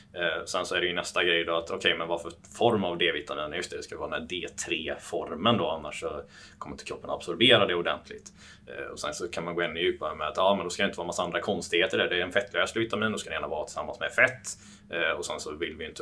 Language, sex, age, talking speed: Swedish, male, 20-39, 300 wpm